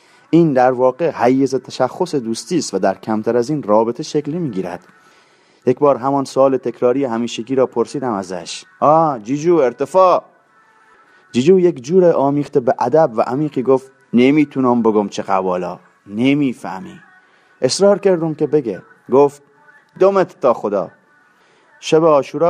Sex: male